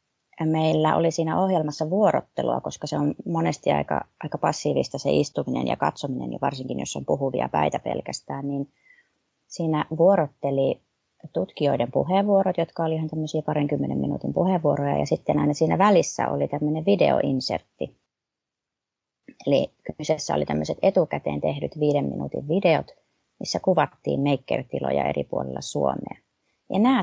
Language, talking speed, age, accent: Finnish, 130 wpm, 30-49, native